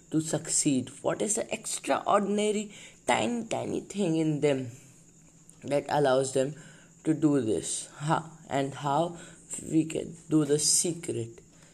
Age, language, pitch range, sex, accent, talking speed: 20-39, English, 130-170 Hz, female, Indian, 125 wpm